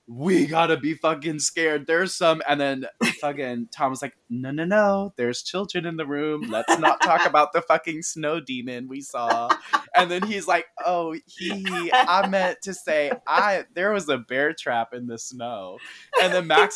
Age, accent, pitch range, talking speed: 20-39, American, 125-180 Hz, 190 wpm